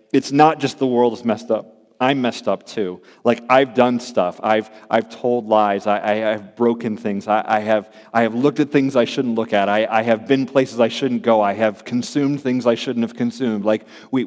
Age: 40-59